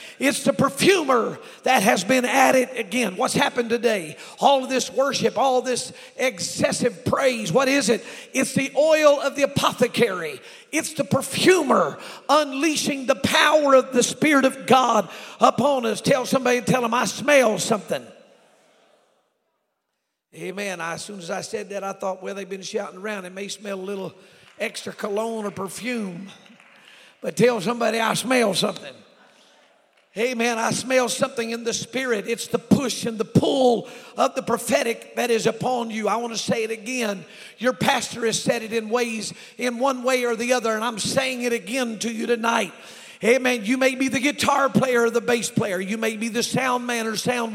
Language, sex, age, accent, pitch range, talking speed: English, male, 50-69, American, 225-265 Hz, 180 wpm